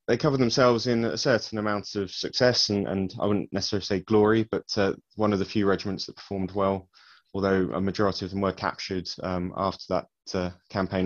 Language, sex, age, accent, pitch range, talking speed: English, male, 20-39, British, 90-105 Hz, 205 wpm